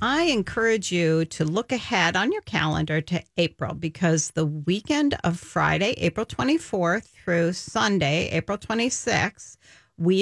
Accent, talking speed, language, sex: American, 135 wpm, English, female